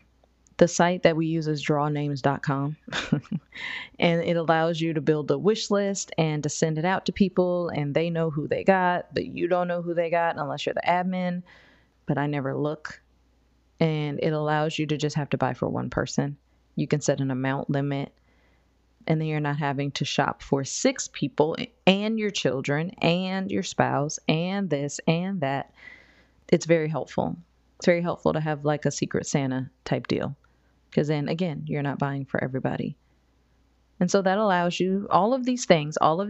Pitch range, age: 140-175 Hz, 30-49